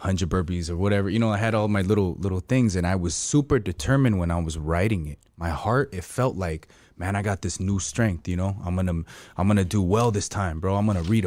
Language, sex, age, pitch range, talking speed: English, male, 20-39, 90-115 Hz, 270 wpm